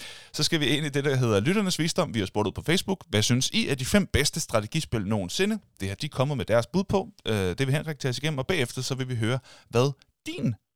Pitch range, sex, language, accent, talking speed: 115-155 Hz, male, Danish, native, 260 wpm